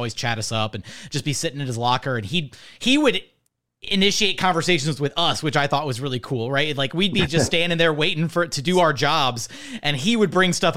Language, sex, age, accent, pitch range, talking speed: English, male, 30-49, American, 145-190 Hz, 240 wpm